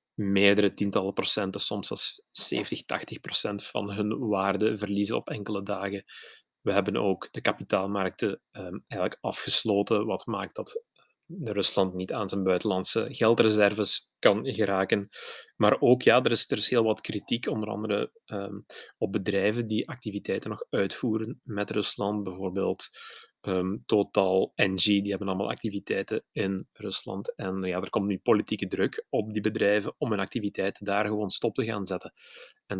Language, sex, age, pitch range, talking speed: Dutch, male, 30-49, 95-105 Hz, 155 wpm